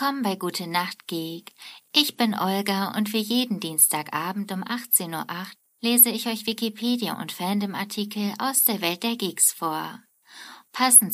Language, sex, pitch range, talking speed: German, female, 165-225 Hz, 150 wpm